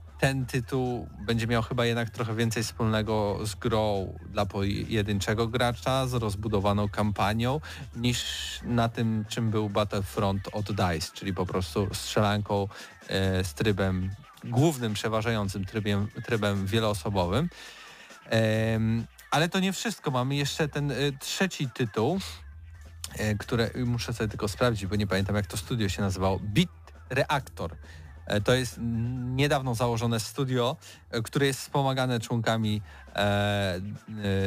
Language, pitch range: Polish, 100-125 Hz